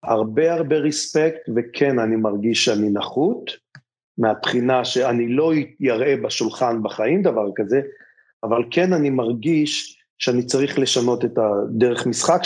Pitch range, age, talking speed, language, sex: 120-170 Hz, 40-59, 125 wpm, English, male